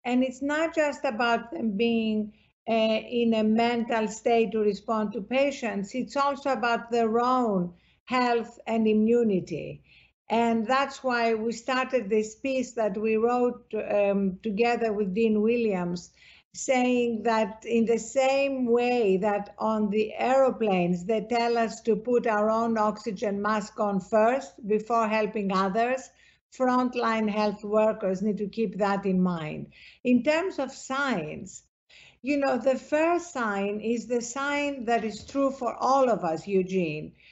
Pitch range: 215-255 Hz